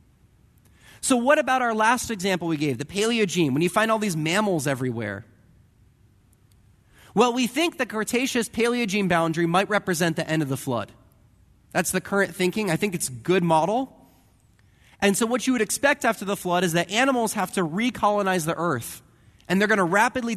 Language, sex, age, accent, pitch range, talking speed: English, male, 30-49, American, 125-205 Hz, 185 wpm